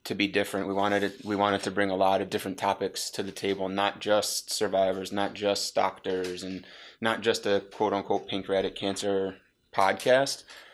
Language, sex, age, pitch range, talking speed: English, male, 20-39, 95-105 Hz, 180 wpm